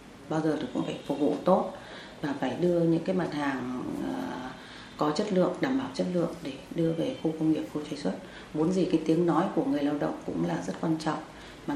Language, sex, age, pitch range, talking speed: Vietnamese, female, 30-49, 160-230 Hz, 235 wpm